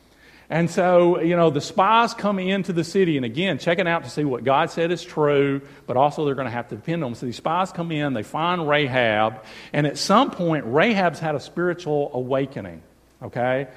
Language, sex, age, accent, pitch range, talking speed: English, male, 40-59, American, 125-170 Hz, 215 wpm